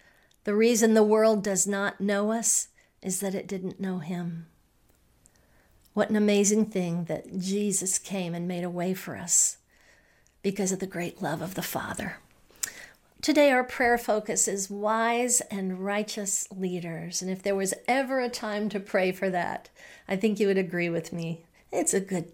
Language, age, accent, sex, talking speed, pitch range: English, 50-69, American, female, 175 wpm, 185-215 Hz